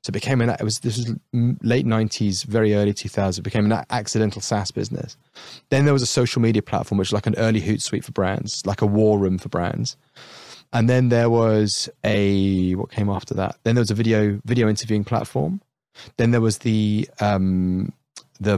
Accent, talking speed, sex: British, 195 wpm, male